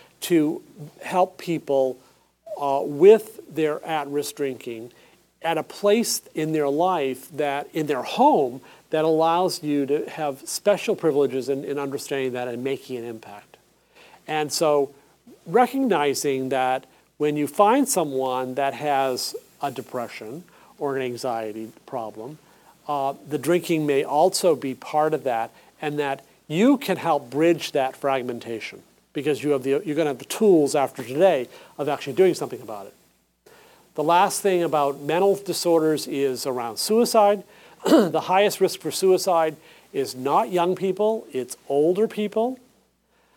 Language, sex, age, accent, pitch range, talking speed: English, male, 40-59, American, 140-190 Hz, 140 wpm